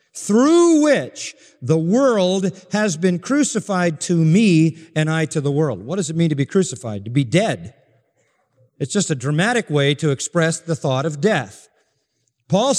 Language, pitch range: English, 155-215 Hz